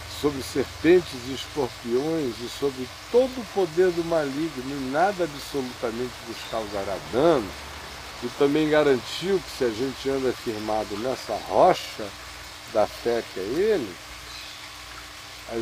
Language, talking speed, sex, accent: Portuguese, 130 wpm, male, Brazilian